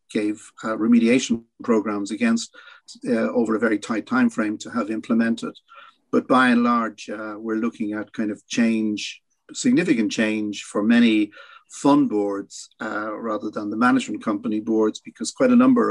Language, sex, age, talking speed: English, male, 50-69, 160 wpm